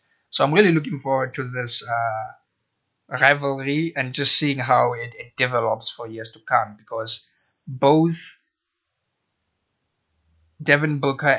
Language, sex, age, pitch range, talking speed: English, male, 20-39, 115-140 Hz, 125 wpm